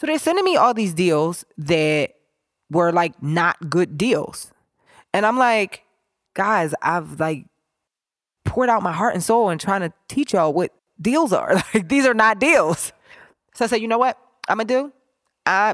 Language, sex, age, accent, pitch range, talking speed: English, female, 20-39, American, 155-210 Hz, 180 wpm